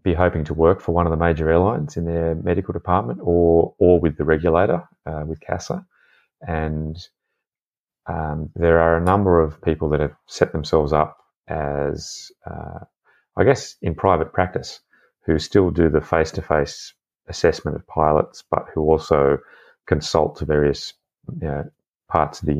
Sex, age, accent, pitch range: male, 30-49, Australian, 70-85 Hz